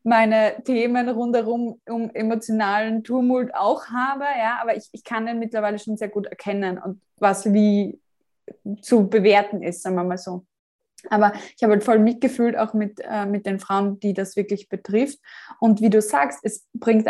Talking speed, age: 180 wpm, 20-39